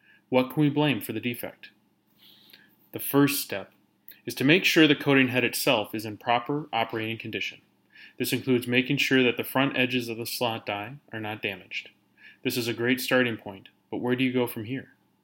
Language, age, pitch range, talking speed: English, 30-49, 115-135 Hz, 200 wpm